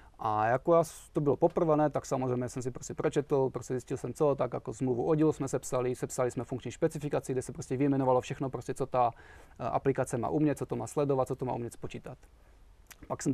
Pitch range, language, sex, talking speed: 125-155 Hz, Czech, male, 215 wpm